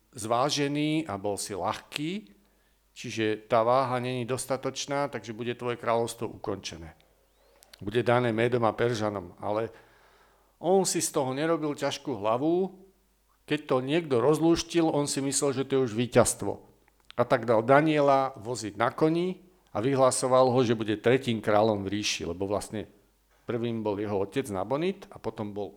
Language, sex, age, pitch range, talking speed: Slovak, male, 50-69, 110-145 Hz, 155 wpm